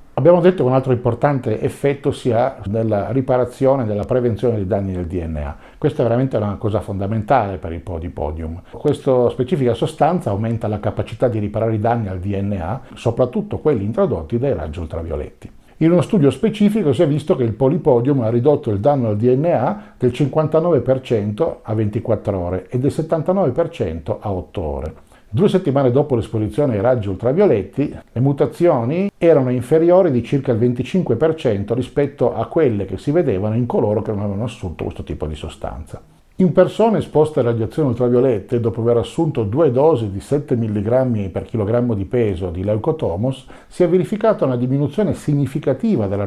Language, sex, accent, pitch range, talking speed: Italian, male, native, 105-150 Hz, 170 wpm